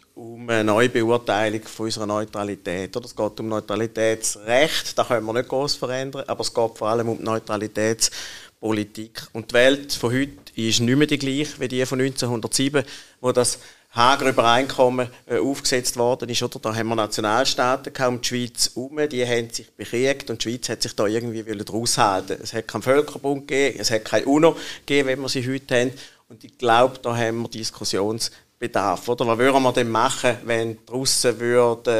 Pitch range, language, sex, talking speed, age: 110-125 Hz, German, male, 190 wpm, 50-69